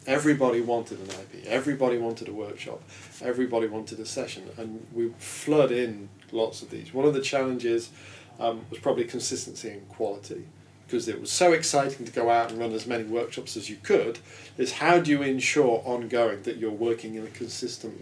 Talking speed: 190 wpm